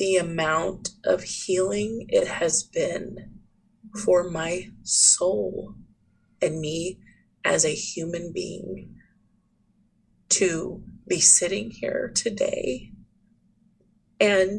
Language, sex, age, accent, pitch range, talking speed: English, female, 20-39, American, 170-205 Hz, 90 wpm